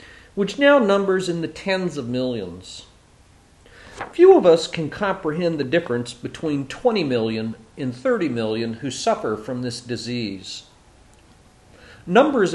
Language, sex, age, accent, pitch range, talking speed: English, male, 50-69, American, 120-185 Hz, 130 wpm